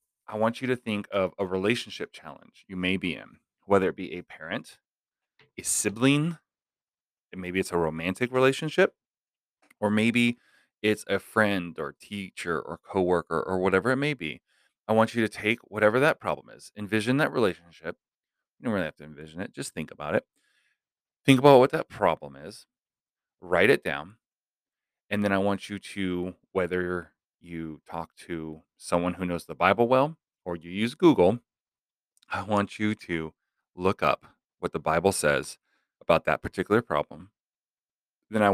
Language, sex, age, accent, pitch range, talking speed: English, male, 30-49, American, 90-110 Hz, 170 wpm